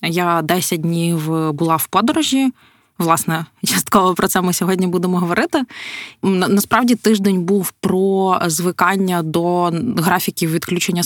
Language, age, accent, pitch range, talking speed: Ukrainian, 20-39, native, 165-200 Hz, 120 wpm